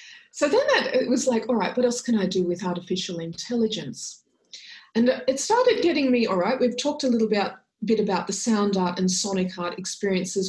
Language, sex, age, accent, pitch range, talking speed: English, female, 30-49, Australian, 185-230 Hz, 200 wpm